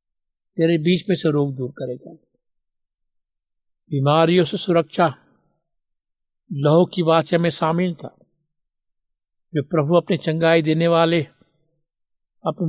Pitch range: 145-170 Hz